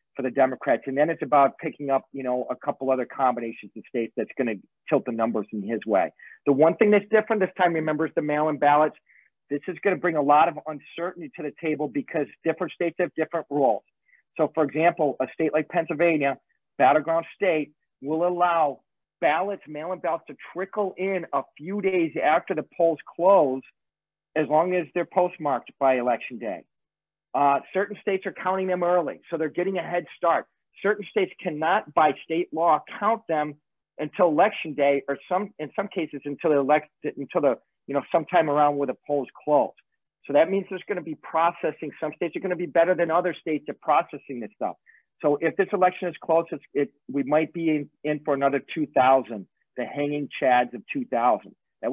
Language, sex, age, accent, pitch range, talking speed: English, male, 40-59, American, 145-175 Hz, 200 wpm